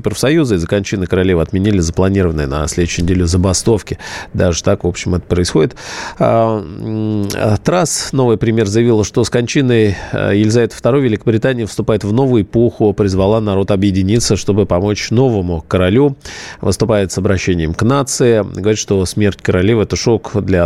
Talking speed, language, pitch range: 145 wpm, Russian, 95-115 Hz